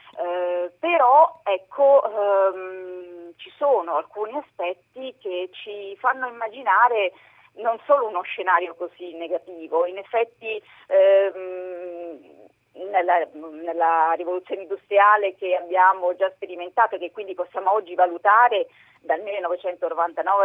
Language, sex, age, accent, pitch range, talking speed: Italian, female, 40-59, native, 175-245 Hz, 110 wpm